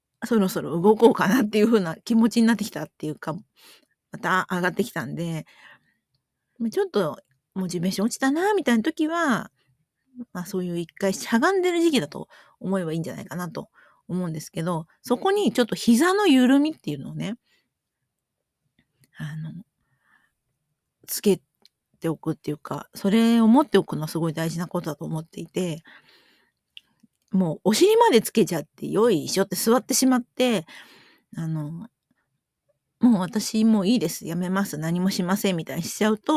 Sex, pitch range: female, 165-235 Hz